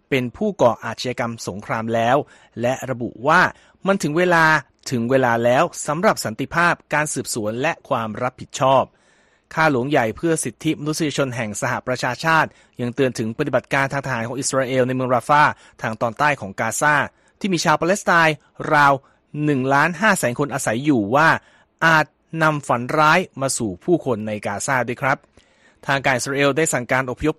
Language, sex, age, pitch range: Thai, male, 30-49, 125-155 Hz